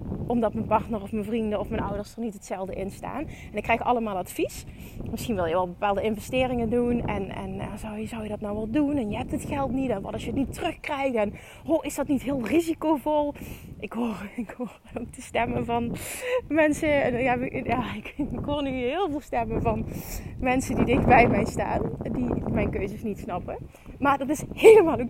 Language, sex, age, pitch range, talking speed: Dutch, female, 20-39, 215-295 Hz, 220 wpm